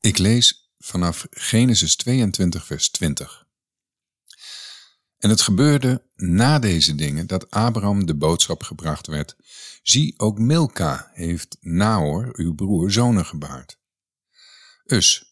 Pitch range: 85-110 Hz